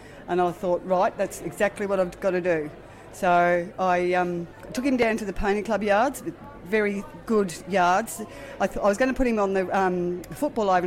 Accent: Australian